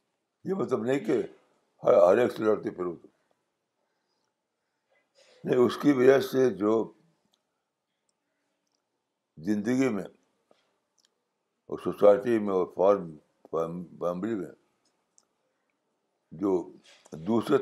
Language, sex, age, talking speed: Urdu, male, 60-79, 75 wpm